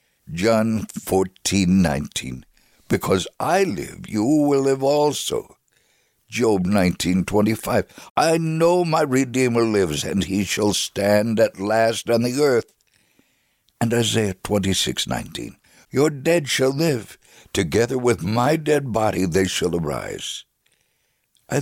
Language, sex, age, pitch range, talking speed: English, male, 60-79, 105-145 Hz, 115 wpm